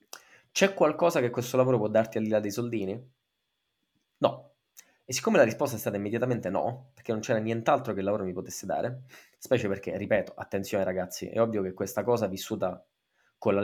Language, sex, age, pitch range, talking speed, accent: Italian, male, 20-39, 95-115 Hz, 195 wpm, native